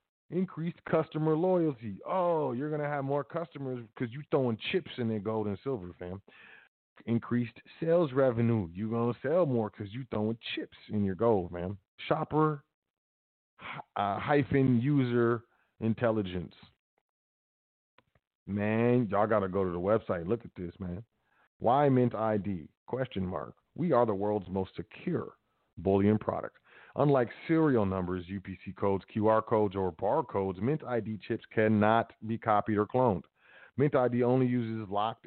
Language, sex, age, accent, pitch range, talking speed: English, male, 40-59, American, 100-135 Hz, 150 wpm